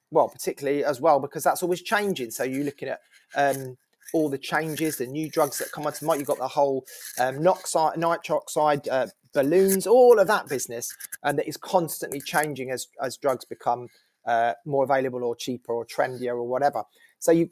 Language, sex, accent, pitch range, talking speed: English, male, British, 135-170 Hz, 190 wpm